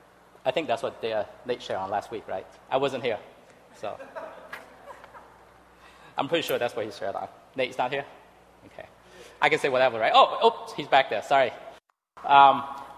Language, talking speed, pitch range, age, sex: English, 180 wpm, 120-155 Hz, 20-39, male